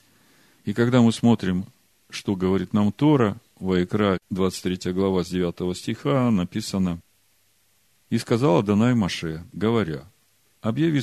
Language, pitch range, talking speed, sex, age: Russian, 90-120 Hz, 115 wpm, male, 50-69